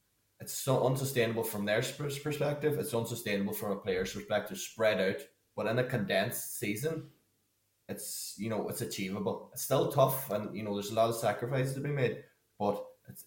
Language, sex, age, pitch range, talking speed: English, male, 20-39, 105-125 Hz, 180 wpm